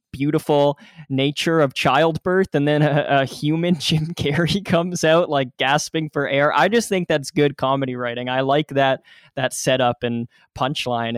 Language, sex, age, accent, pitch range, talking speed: English, male, 10-29, American, 120-140 Hz, 165 wpm